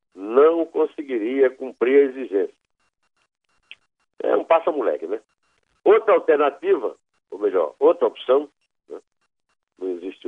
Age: 60-79